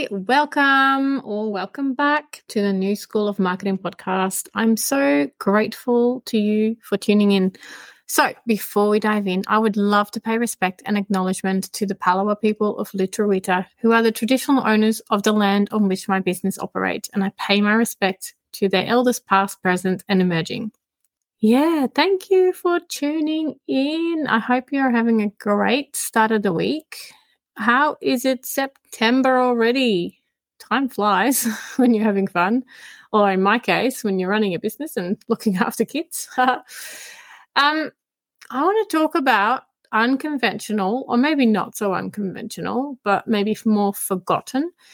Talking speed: 160 wpm